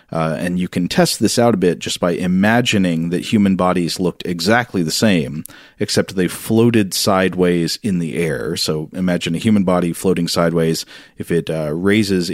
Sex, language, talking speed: male, English, 180 wpm